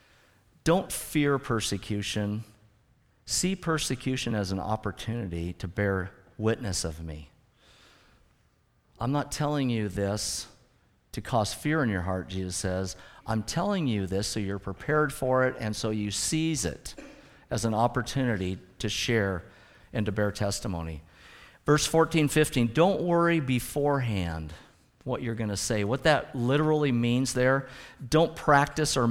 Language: English